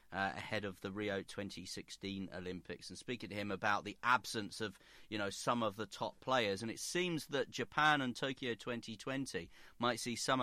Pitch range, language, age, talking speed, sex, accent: 100-120 Hz, English, 40-59, 190 wpm, male, British